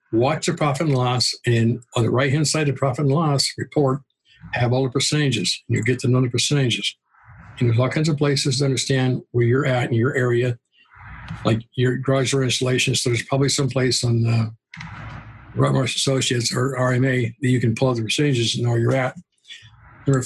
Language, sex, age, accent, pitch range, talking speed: English, male, 60-79, American, 120-140 Hz, 205 wpm